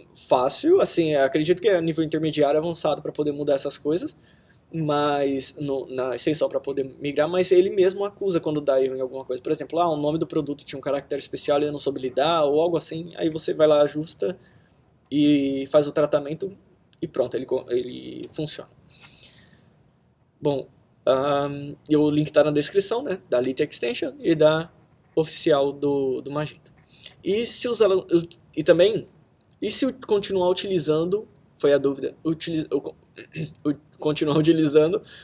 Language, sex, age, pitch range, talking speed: Portuguese, male, 20-39, 140-175 Hz, 165 wpm